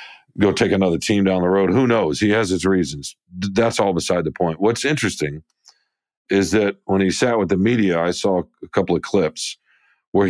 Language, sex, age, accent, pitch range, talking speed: English, male, 50-69, American, 85-105 Hz, 205 wpm